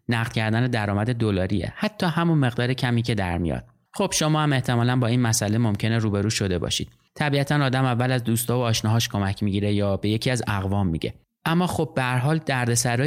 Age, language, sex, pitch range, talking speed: 30-49, Persian, male, 115-140 Hz, 195 wpm